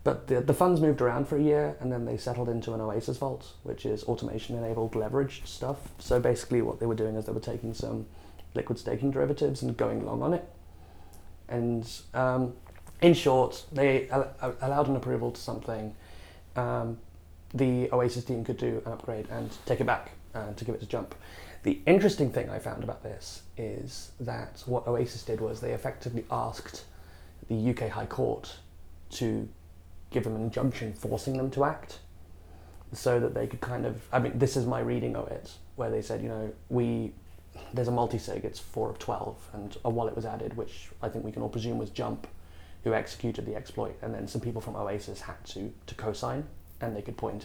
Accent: British